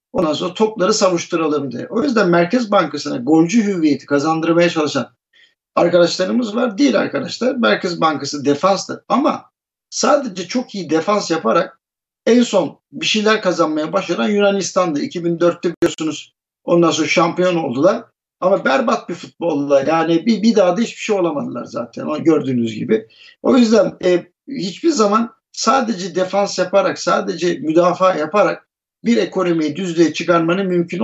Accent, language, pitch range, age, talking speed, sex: native, Turkish, 165-220 Hz, 60-79, 140 wpm, male